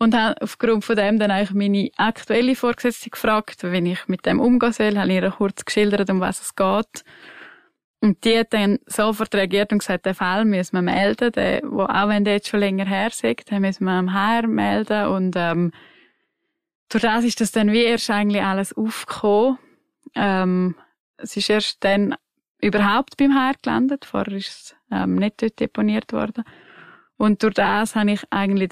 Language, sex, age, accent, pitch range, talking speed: German, female, 20-39, Swiss, 190-225 Hz, 190 wpm